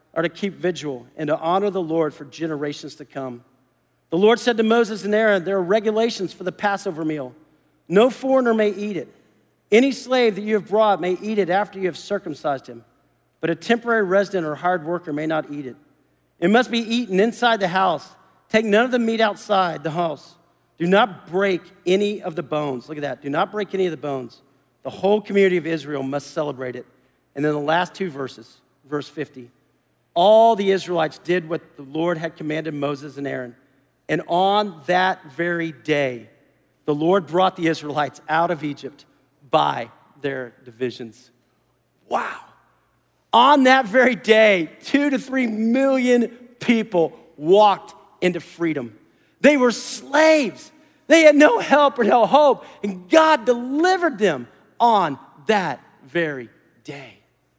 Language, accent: English, American